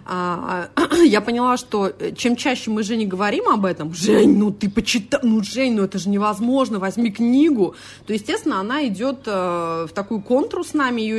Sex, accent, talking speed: female, native, 175 wpm